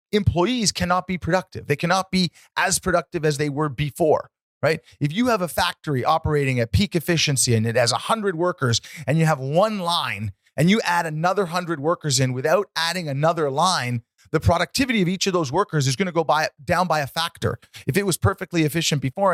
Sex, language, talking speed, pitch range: male, English, 210 wpm, 135-195 Hz